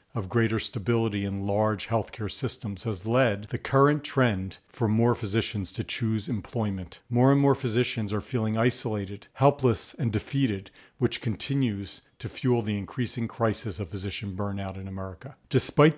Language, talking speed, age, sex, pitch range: English, 155 wpm, 40-59, male, 105-130 Hz